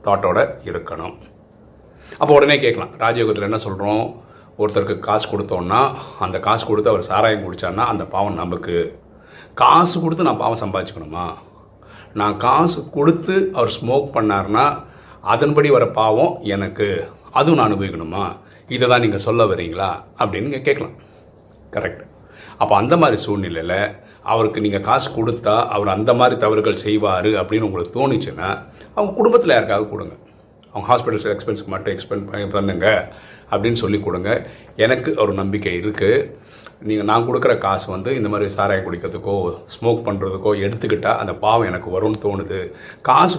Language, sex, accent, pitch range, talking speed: Tamil, male, native, 100-120 Hz, 130 wpm